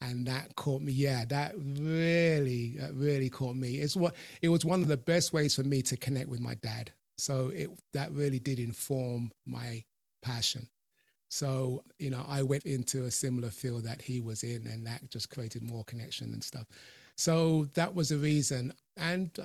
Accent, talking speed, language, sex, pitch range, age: British, 190 wpm, English, male, 120-135 Hz, 30-49